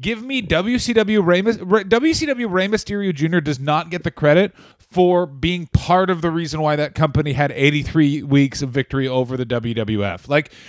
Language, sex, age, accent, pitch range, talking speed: English, male, 30-49, American, 145-190 Hz, 175 wpm